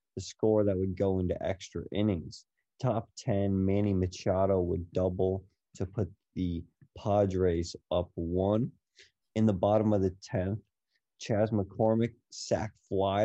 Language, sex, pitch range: English, male, 95-105 Hz